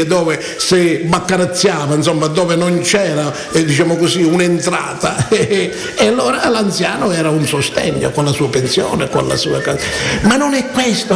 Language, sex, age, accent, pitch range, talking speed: Italian, male, 50-69, native, 165-250 Hz, 150 wpm